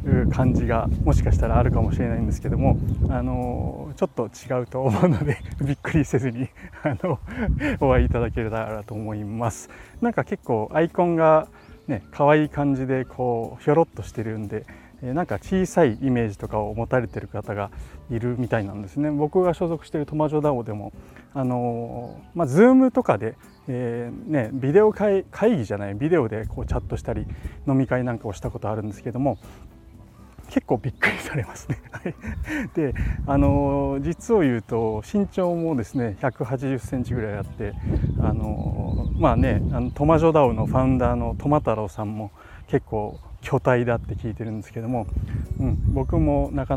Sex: male